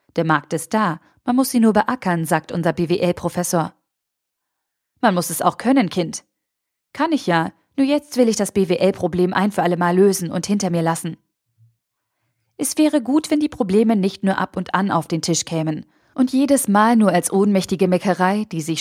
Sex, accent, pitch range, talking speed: female, German, 170-220 Hz, 190 wpm